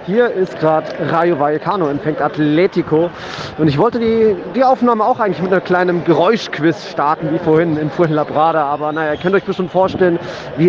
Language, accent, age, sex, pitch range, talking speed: German, German, 30-49, male, 160-215 Hz, 180 wpm